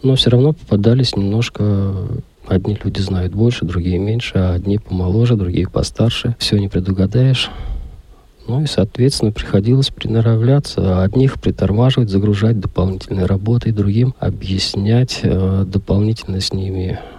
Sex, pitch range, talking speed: male, 95-120 Hz, 120 wpm